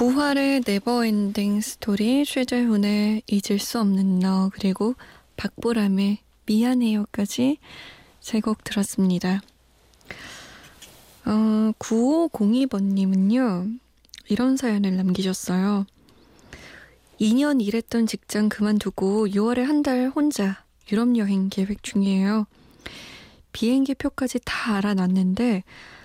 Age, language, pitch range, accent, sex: 20-39, Korean, 195-245 Hz, native, female